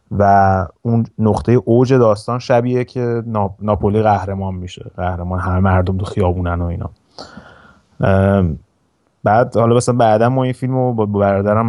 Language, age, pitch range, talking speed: Persian, 30-49, 95-115 Hz, 135 wpm